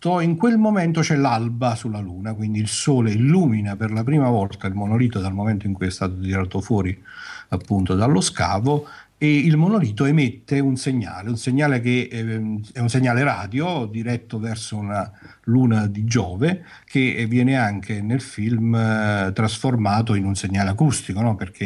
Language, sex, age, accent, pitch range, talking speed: Italian, male, 50-69, native, 100-130 Hz, 165 wpm